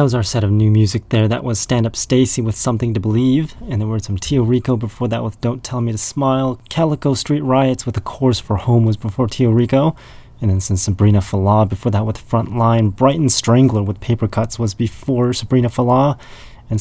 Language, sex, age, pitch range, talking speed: English, male, 30-49, 105-125 Hz, 220 wpm